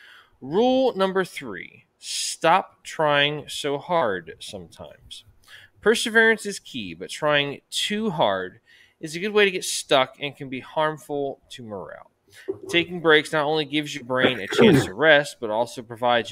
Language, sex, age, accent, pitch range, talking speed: English, male, 20-39, American, 120-165 Hz, 155 wpm